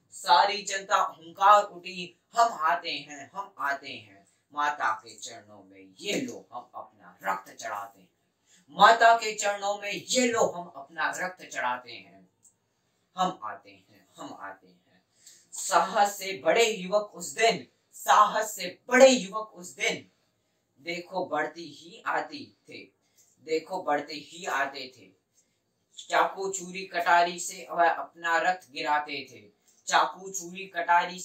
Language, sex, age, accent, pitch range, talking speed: Hindi, female, 20-39, native, 135-195 Hz, 145 wpm